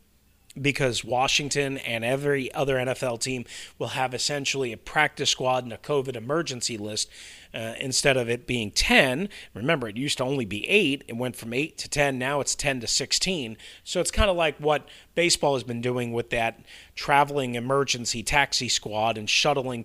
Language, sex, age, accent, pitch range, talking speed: English, male, 30-49, American, 115-150 Hz, 180 wpm